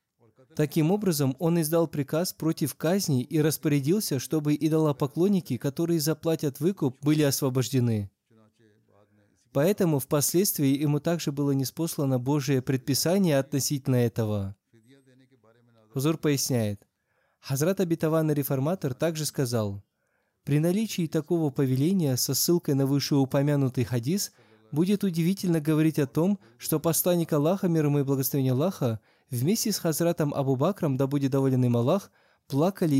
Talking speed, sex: 115 wpm, male